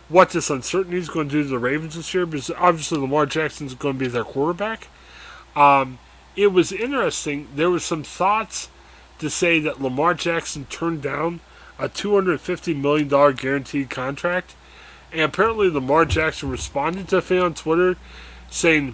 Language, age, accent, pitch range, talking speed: English, 30-49, American, 130-165 Hz, 170 wpm